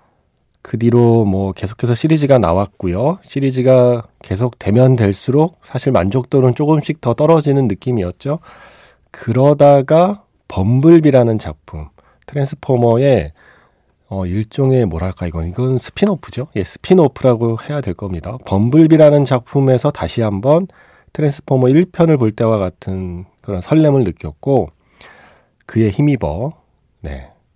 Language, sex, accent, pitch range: Korean, male, native, 95-145 Hz